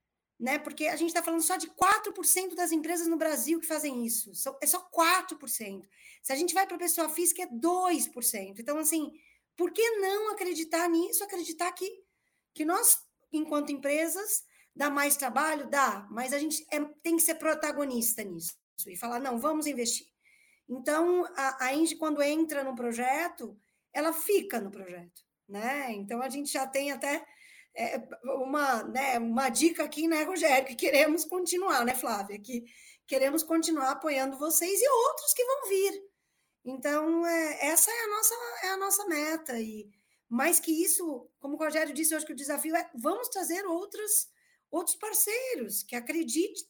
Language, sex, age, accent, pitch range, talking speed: Portuguese, female, 20-39, Brazilian, 260-350 Hz, 170 wpm